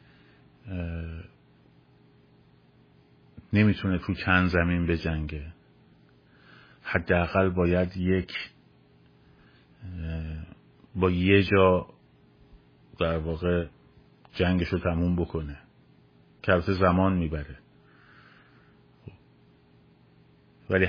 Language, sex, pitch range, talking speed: Persian, male, 70-95 Hz, 70 wpm